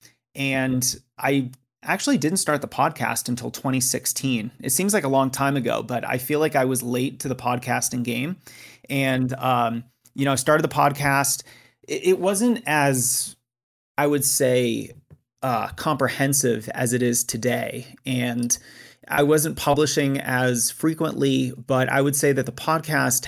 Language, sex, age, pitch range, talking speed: English, male, 30-49, 125-140 Hz, 155 wpm